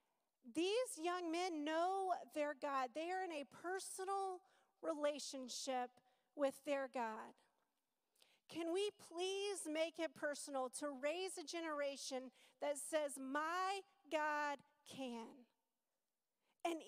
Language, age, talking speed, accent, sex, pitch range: English, 40-59, 110 wpm, American, female, 260-330 Hz